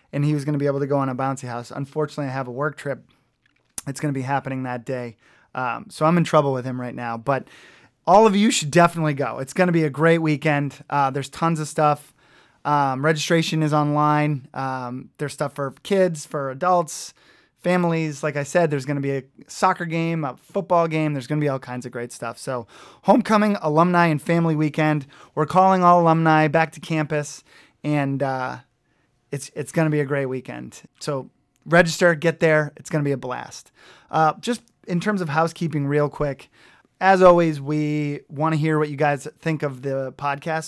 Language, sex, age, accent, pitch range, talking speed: English, male, 20-39, American, 135-165 Hz, 210 wpm